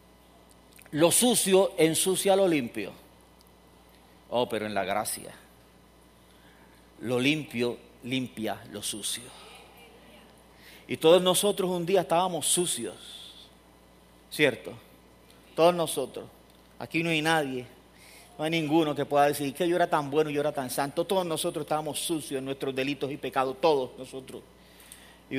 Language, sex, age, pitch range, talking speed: English, male, 40-59, 120-185 Hz, 130 wpm